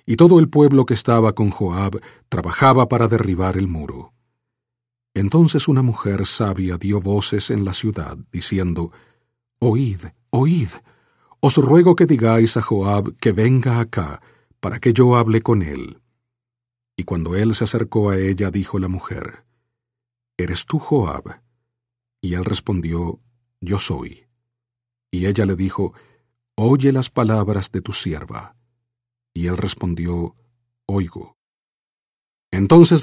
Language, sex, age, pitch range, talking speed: English, male, 40-59, 100-125 Hz, 135 wpm